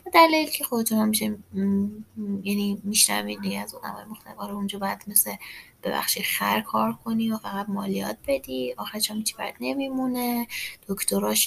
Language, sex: Persian, female